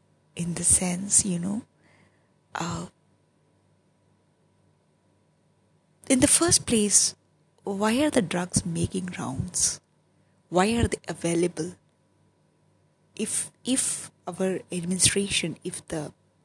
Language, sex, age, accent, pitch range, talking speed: English, female, 20-39, Indian, 165-215 Hz, 95 wpm